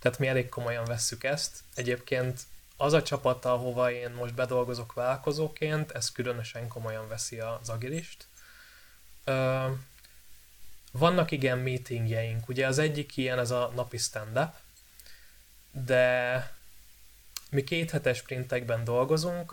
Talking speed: 115 wpm